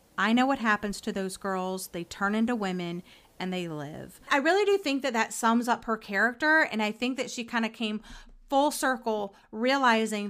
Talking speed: 205 wpm